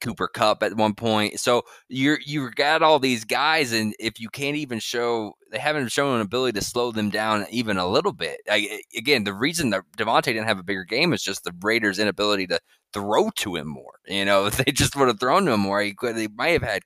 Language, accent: English, American